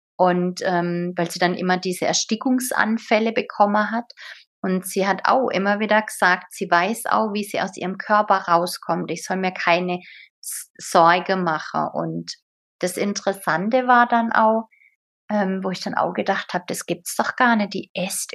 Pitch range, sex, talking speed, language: 170-210 Hz, female, 170 wpm, German